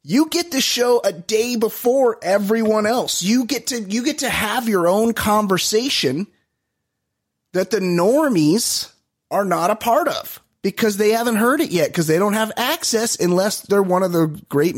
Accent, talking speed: American, 180 wpm